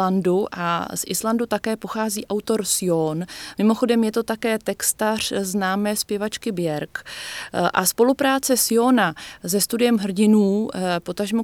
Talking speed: 115 wpm